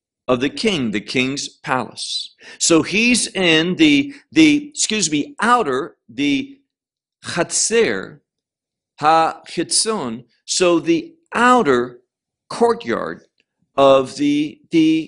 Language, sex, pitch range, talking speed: English, male, 140-225 Hz, 100 wpm